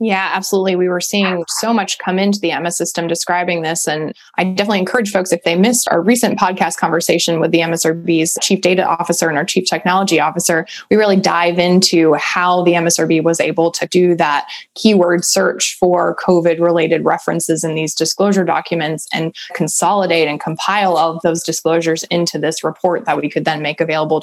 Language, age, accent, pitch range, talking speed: English, 20-39, American, 165-190 Hz, 190 wpm